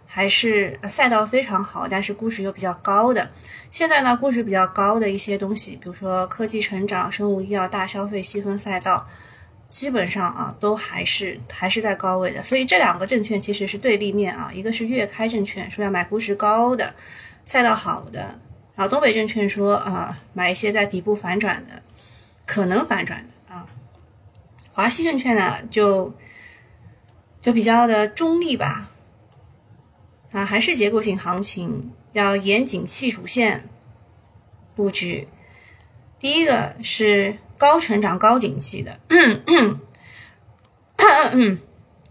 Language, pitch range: Chinese, 180-225 Hz